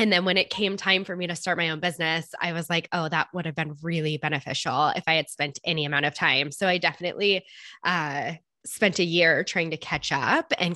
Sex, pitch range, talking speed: female, 160-190 Hz, 240 wpm